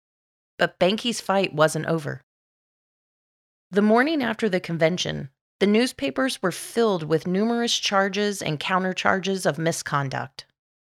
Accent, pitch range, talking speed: American, 155-215 Hz, 115 wpm